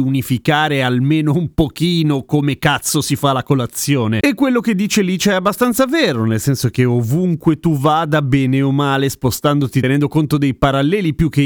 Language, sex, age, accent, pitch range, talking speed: Italian, male, 30-49, native, 130-170 Hz, 180 wpm